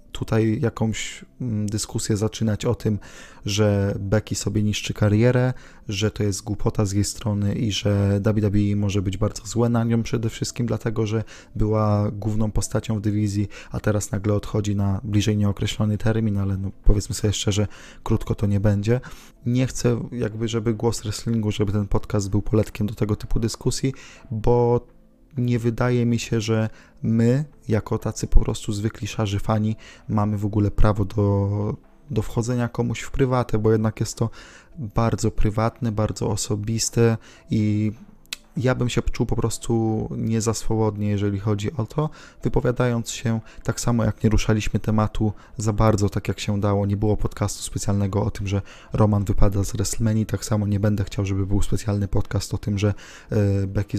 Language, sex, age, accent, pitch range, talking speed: Polish, male, 20-39, native, 105-115 Hz, 170 wpm